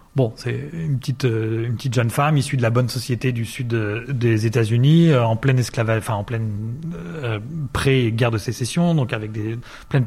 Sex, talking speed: male, 195 wpm